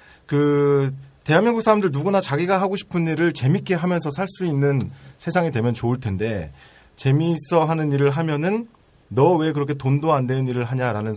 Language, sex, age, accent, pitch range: Korean, male, 30-49, native, 125-170 Hz